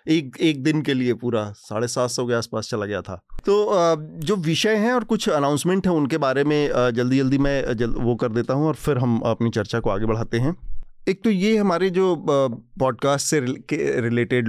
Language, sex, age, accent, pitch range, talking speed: Hindi, male, 30-49, native, 115-140 Hz, 205 wpm